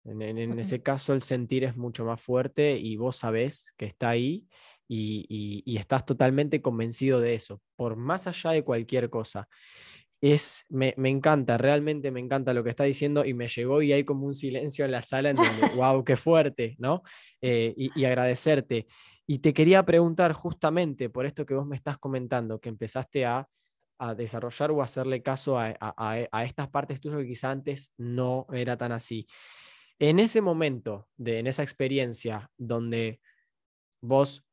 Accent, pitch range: Argentinian, 120-145 Hz